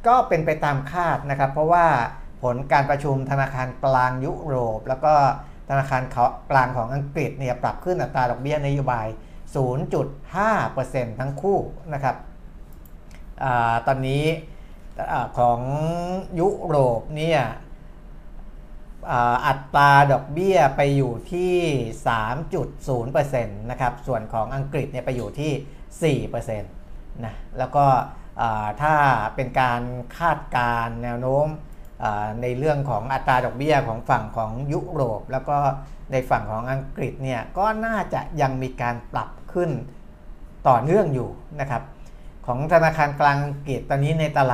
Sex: male